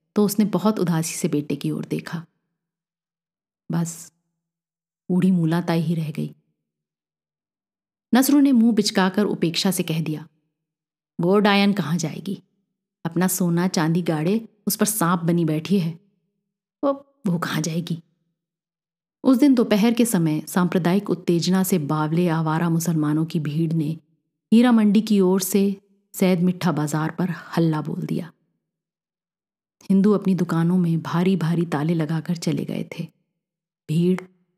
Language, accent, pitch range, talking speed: Hindi, native, 160-190 Hz, 135 wpm